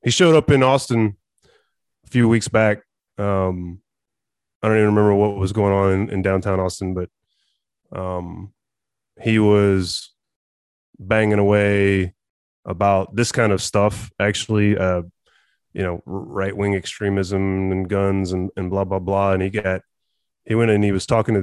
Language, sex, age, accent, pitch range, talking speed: English, male, 20-39, American, 95-110 Hz, 160 wpm